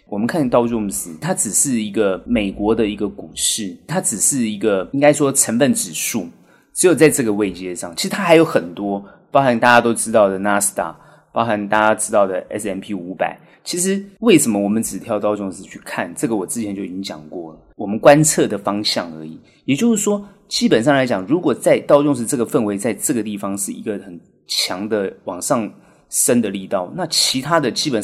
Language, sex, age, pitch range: Chinese, male, 30-49, 100-155 Hz